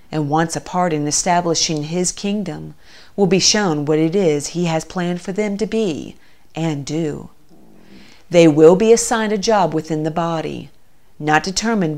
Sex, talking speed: female, 170 wpm